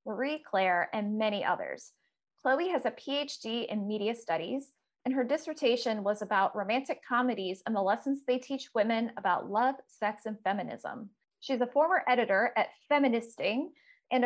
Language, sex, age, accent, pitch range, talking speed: English, female, 20-39, American, 210-275 Hz, 155 wpm